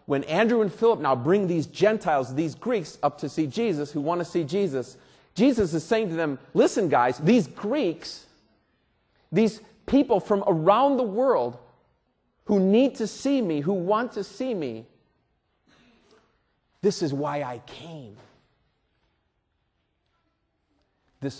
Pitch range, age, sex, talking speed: 130-195 Hz, 40-59, male, 140 wpm